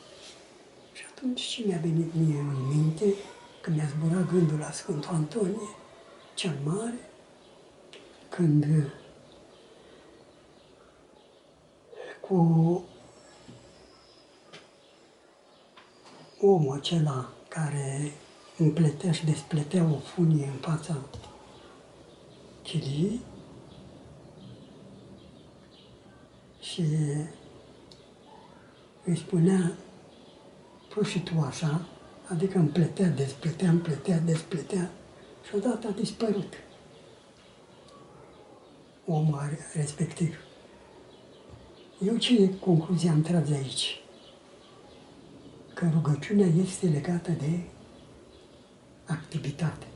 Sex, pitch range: male, 150-190 Hz